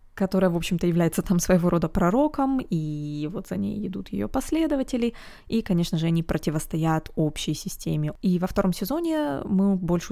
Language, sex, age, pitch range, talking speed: Russian, female, 20-39, 170-210 Hz, 165 wpm